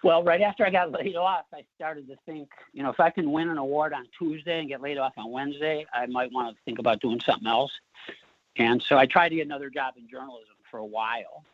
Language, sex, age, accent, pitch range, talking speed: English, male, 50-69, American, 115-140 Hz, 255 wpm